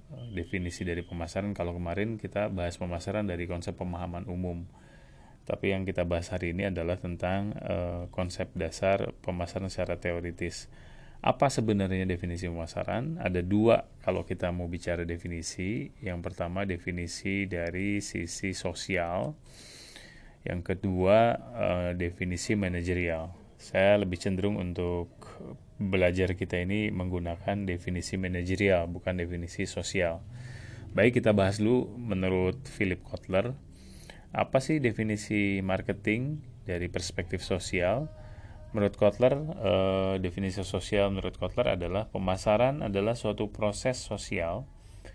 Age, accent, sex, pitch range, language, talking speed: 30-49, Indonesian, male, 90-105 Hz, English, 115 wpm